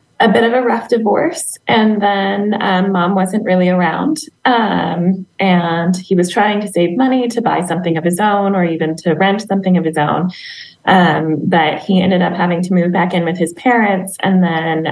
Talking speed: 200 wpm